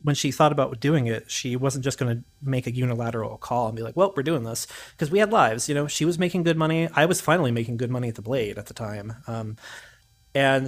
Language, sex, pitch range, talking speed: English, male, 115-145 Hz, 265 wpm